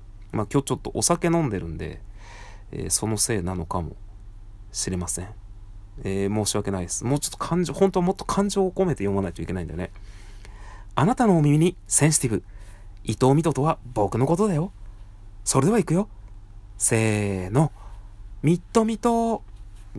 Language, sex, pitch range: Japanese, male, 100-110 Hz